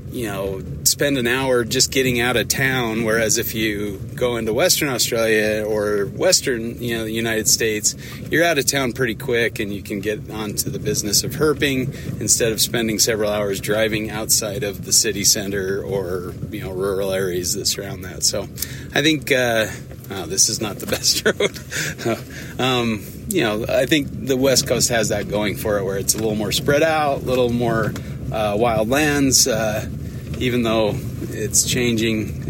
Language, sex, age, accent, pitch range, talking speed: English, male, 30-49, American, 105-130 Hz, 185 wpm